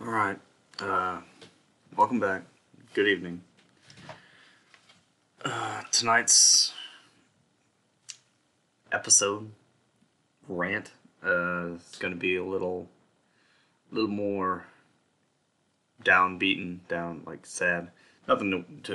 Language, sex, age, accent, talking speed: English, male, 20-39, American, 80 wpm